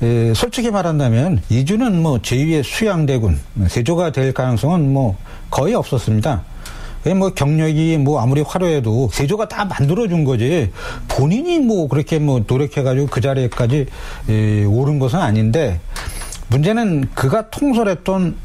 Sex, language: male, Korean